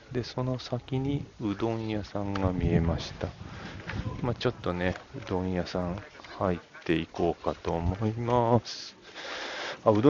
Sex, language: male, Japanese